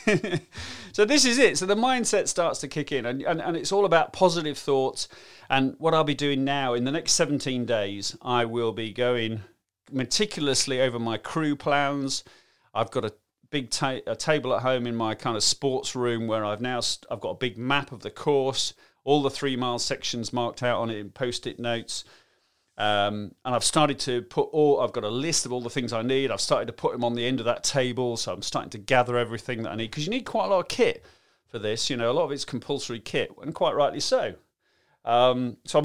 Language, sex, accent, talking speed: English, male, British, 235 wpm